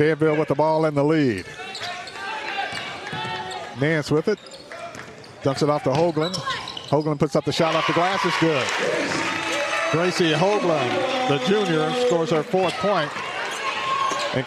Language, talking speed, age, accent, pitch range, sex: English, 140 wpm, 50-69, American, 150-170 Hz, male